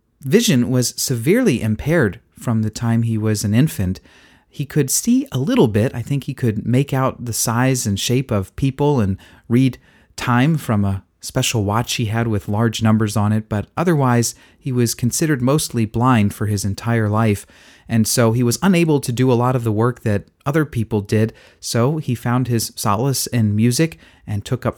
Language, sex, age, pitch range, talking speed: English, male, 30-49, 105-130 Hz, 195 wpm